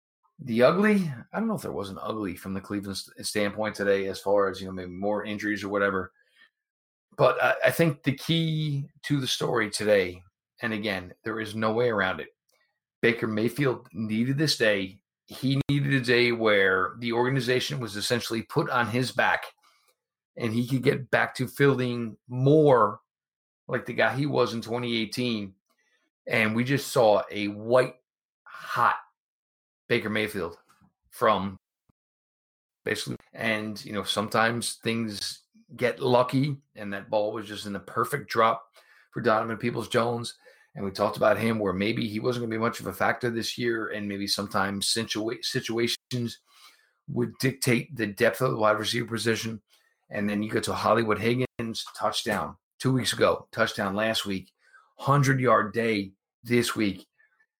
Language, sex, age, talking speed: English, male, 40-59, 165 wpm